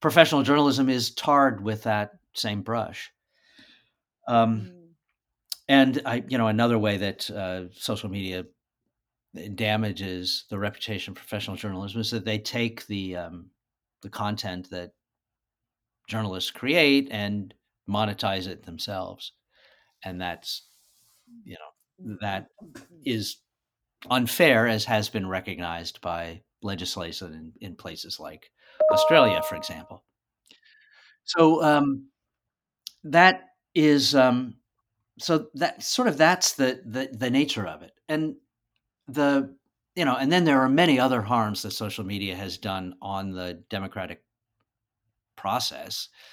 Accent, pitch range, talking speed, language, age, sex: American, 100-125 Hz, 125 wpm, English, 50-69, male